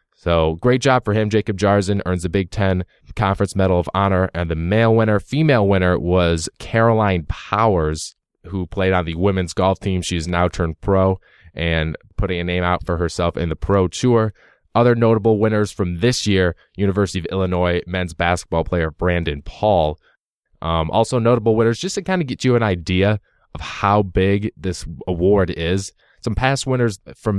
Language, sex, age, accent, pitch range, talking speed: English, male, 20-39, American, 90-110 Hz, 180 wpm